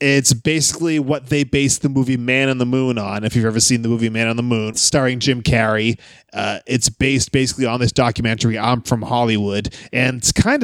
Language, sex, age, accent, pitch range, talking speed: English, male, 20-39, American, 120-145 Hz, 215 wpm